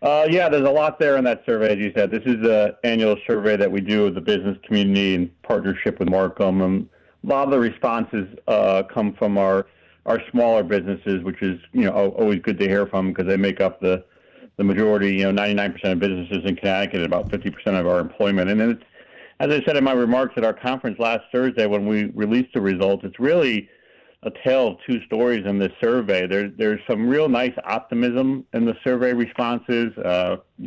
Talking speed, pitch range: 220 wpm, 95-110 Hz